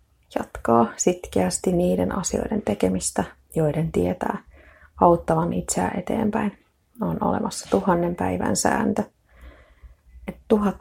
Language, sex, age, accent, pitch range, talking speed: Finnish, female, 30-49, native, 150-205 Hz, 95 wpm